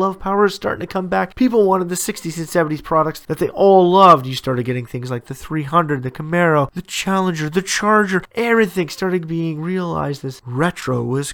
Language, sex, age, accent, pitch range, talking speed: English, male, 30-49, American, 135-190 Hz, 200 wpm